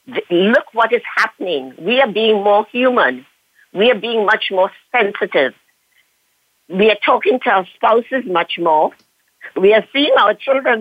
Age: 50-69